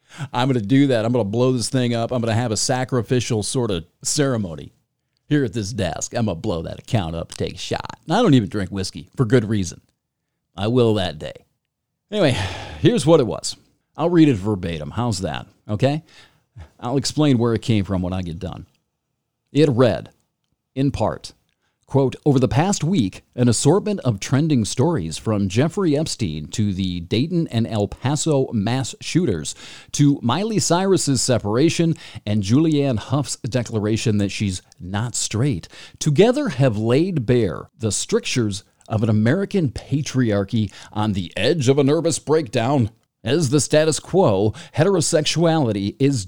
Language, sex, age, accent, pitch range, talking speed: English, male, 50-69, American, 105-145 Hz, 170 wpm